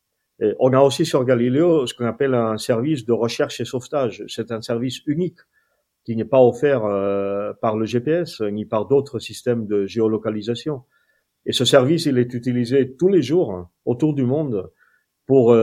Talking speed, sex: 175 wpm, male